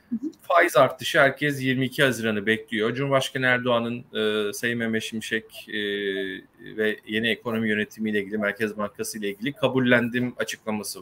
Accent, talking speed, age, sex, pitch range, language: native, 140 wpm, 40-59, male, 115-155 Hz, Turkish